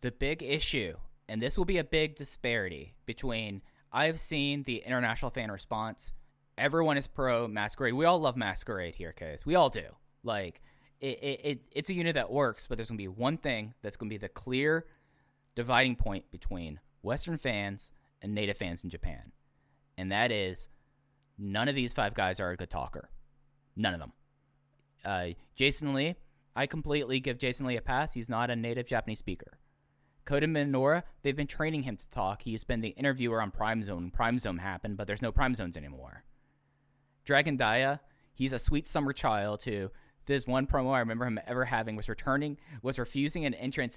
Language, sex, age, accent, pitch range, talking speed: English, male, 20-39, American, 110-140 Hz, 190 wpm